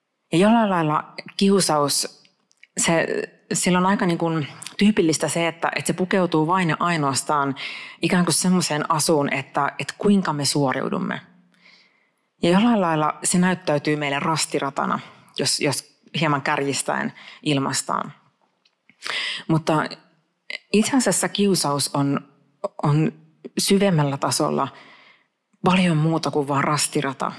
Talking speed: 110 wpm